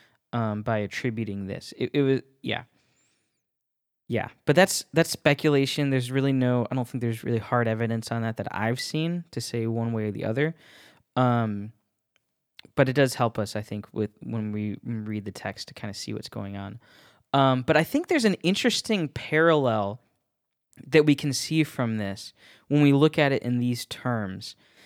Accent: American